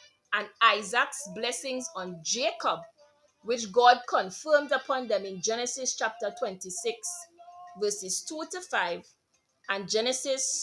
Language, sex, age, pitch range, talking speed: English, female, 30-49, 210-295 Hz, 115 wpm